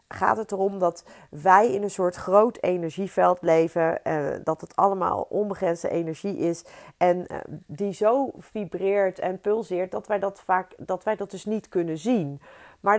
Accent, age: Dutch, 40-59